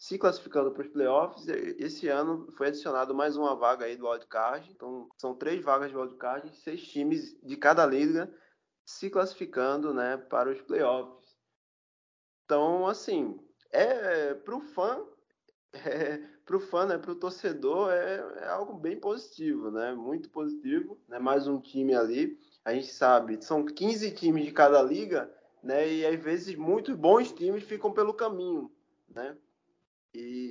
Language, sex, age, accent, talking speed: Portuguese, male, 20-39, Brazilian, 165 wpm